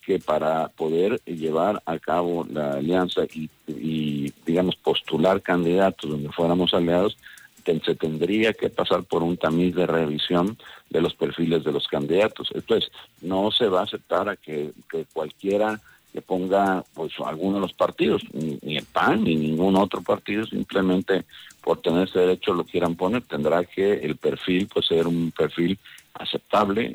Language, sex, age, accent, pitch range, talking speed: Spanish, male, 50-69, Mexican, 80-95 Hz, 160 wpm